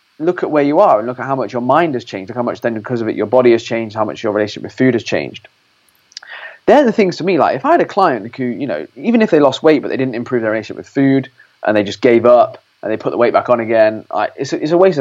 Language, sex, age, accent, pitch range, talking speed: English, male, 20-39, British, 115-160 Hz, 310 wpm